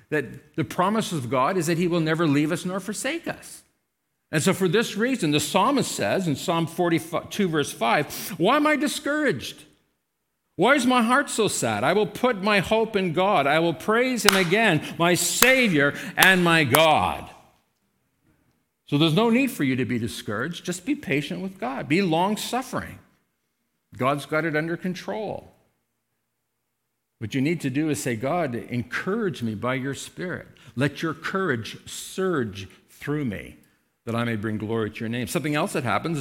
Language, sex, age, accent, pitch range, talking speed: English, male, 50-69, American, 120-190 Hz, 180 wpm